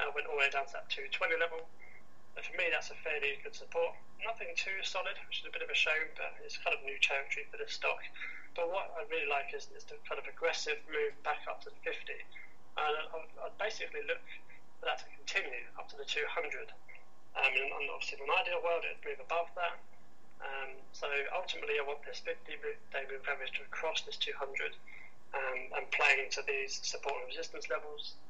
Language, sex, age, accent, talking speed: English, male, 30-49, British, 220 wpm